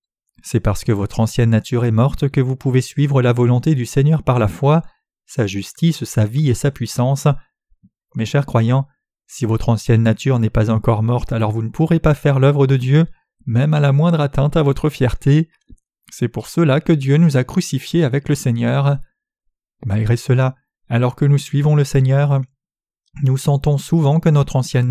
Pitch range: 120-150 Hz